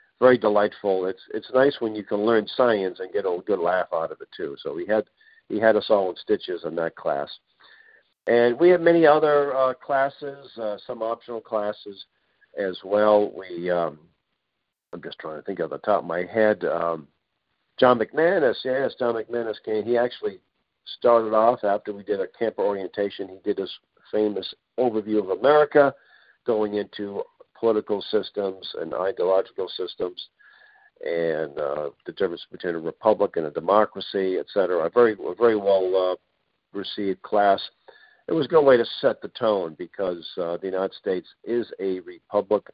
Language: English